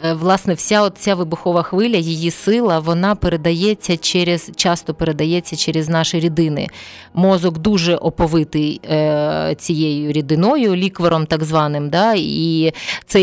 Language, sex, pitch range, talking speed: Ukrainian, female, 160-190 Hz, 120 wpm